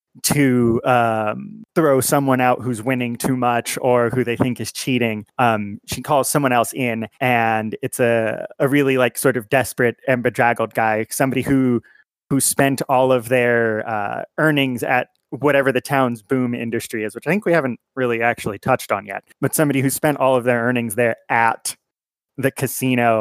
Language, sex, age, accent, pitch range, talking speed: English, male, 20-39, American, 115-130 Hz, 185 wpm